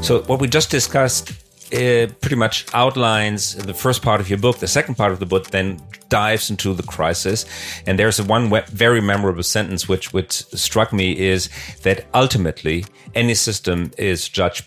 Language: German